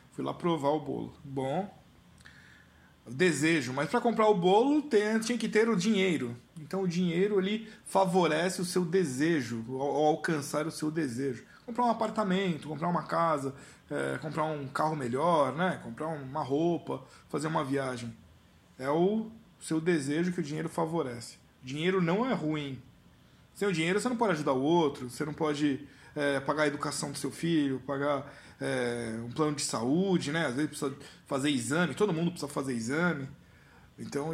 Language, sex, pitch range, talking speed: Portuguese, male, 145-185 Hz, 175 wpm